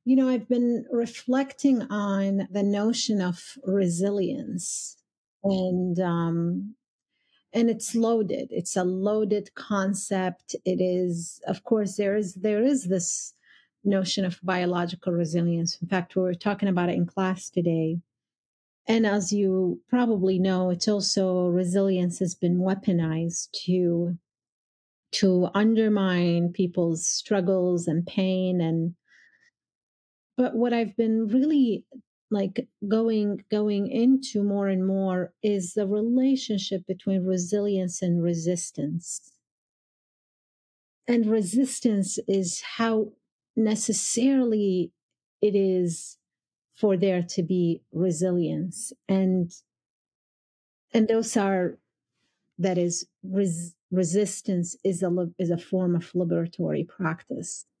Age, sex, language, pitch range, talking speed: 40-59, female, English, 180-215 Hz, 110 wpm